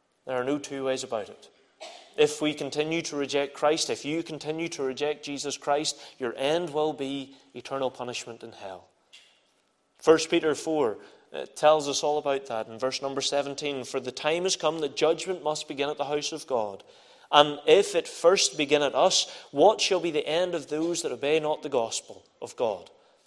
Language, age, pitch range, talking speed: English, 30-49, 135-165 Hz, 195 wpm